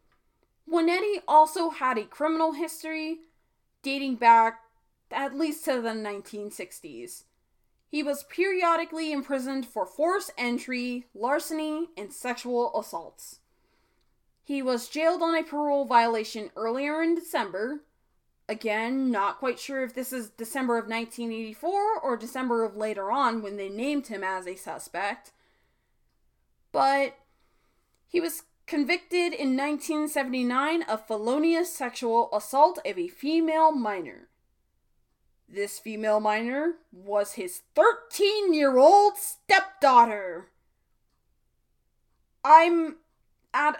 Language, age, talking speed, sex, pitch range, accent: English, 20-39, 110 wpm, female, 225-320 Hz, American